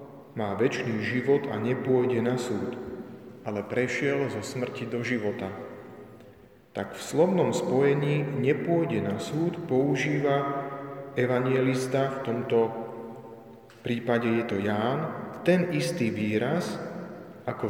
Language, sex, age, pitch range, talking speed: Slovak, male, 40-59, 110-135 Hz, 110 wpm